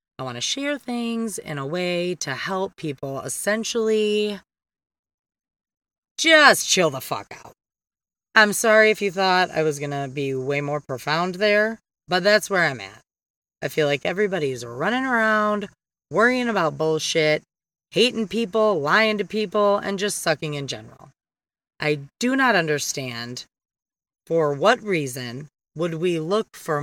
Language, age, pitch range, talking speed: English, 30-49, 155-210 Hz, 150 wpm